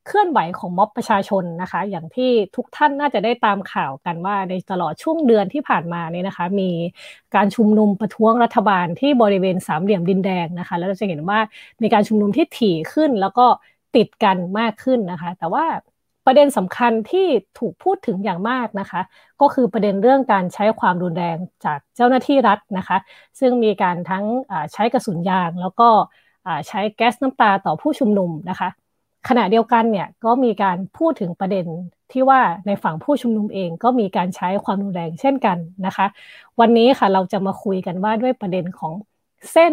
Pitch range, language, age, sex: 190-245 Hz, Thai, 20-39, female